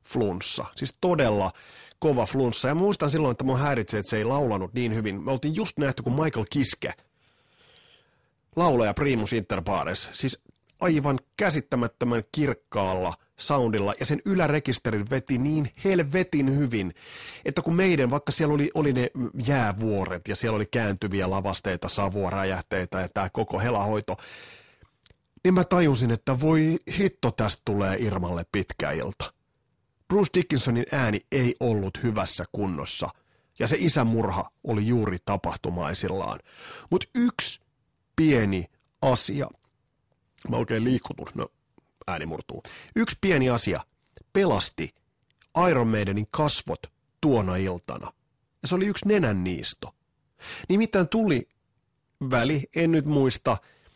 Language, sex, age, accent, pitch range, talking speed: Finnish, male, 30-49, native, 105-150 Hz, 125 wpm